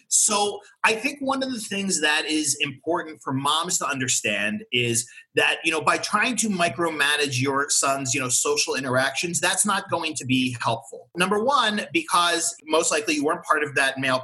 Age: 30-49